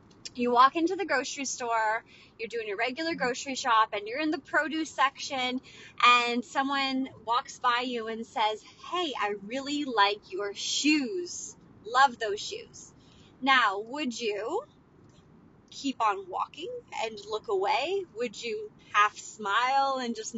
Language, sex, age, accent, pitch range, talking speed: English, female, 20-39, American, 215-330 Hz, 145 wpm